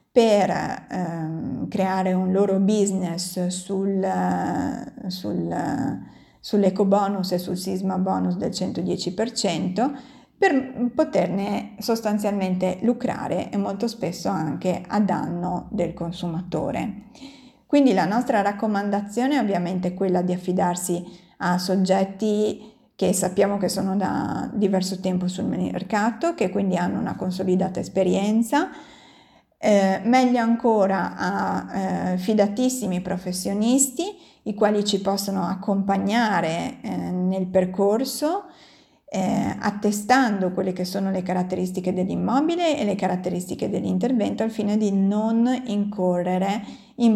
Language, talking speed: Italian, 110 wpm